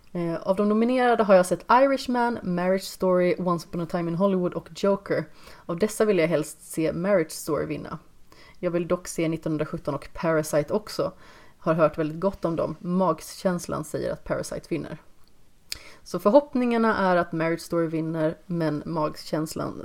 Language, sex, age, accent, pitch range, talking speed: Swedish, female, 30-49, native, 160-190 Hz, 165 wpm